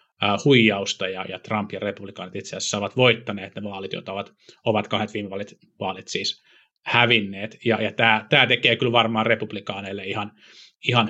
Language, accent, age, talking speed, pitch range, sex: Finnish, native, 30-49, 160 wpm, 105-115 Hz, male